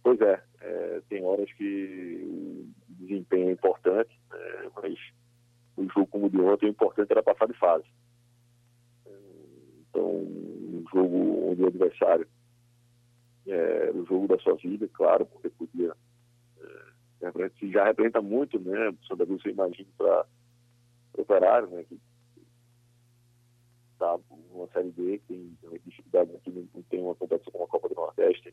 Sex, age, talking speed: male, 40-59, 145 wpm